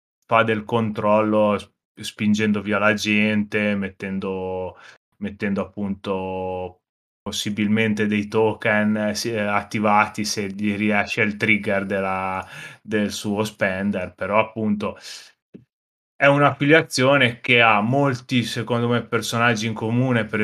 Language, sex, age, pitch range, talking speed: Italian, male, 20-39, 100-115 Hz, 105 wpm